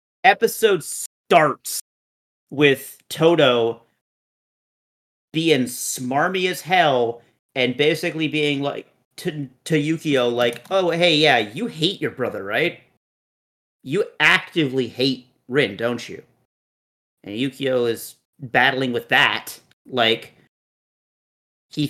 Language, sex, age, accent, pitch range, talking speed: English, male, 30-49, American, 125-155 Hz, 105 wpm